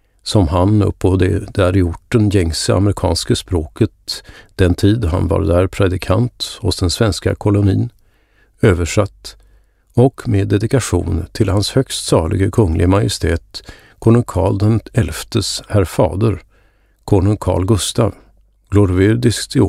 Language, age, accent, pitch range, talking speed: Swedish, 50-69, native, 90-110 Hz, 125 wpm